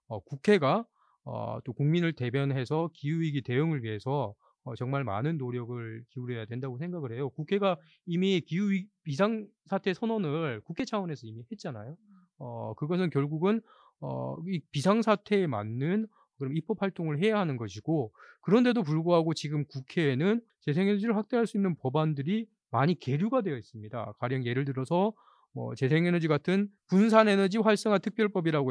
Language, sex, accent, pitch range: Korean, male, native, 130-195 Hz